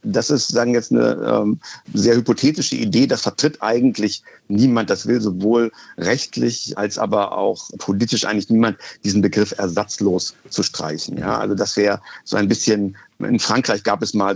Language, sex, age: German, male, 50-69